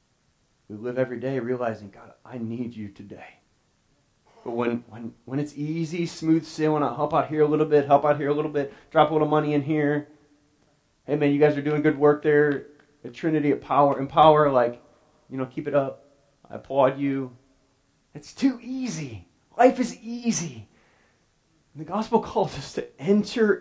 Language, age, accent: English, 30-49, American